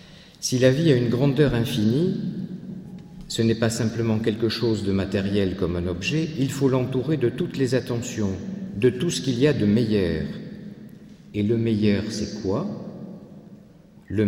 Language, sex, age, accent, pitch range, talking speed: French, male, 50-69, French, 105-160 Hz, 165 wpm